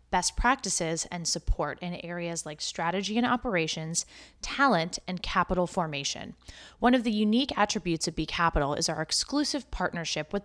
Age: 20-39